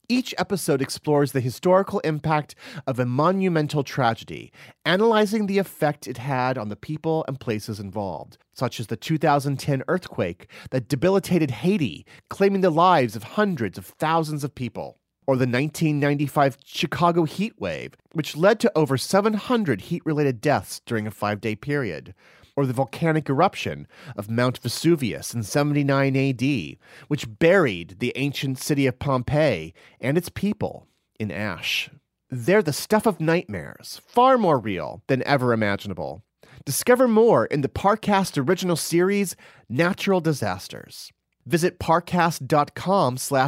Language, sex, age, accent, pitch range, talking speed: English, male, 30-49, American, 125-175 Hz, 135 wpm